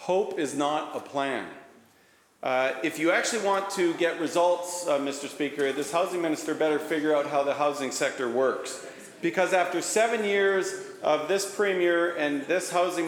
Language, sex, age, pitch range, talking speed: English, male, 40-59, 170-220 Hz, 170 wpm